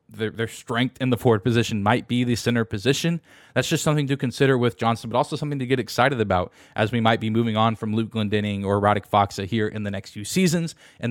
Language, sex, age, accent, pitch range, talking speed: English, male, 20-39, American, 110-140 Hz, 245 wpm